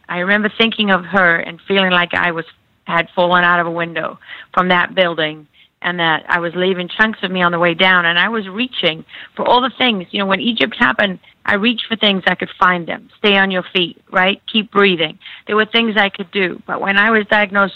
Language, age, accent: English, 50-69, American